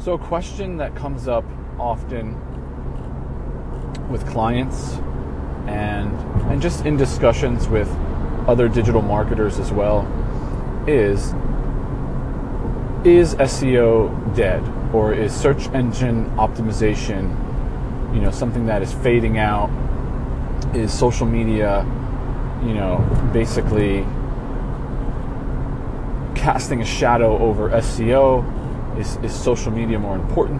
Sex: male